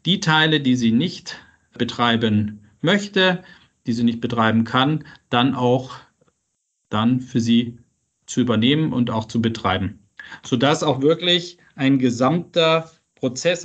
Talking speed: 130 wpm